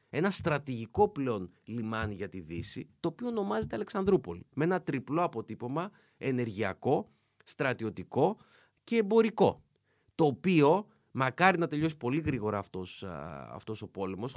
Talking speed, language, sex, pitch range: 125 wpm, Greek, male, 105-150 Hz